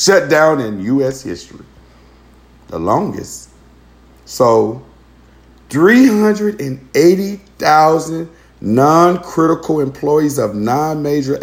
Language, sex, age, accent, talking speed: English, male, 50-69, American, 70 wpm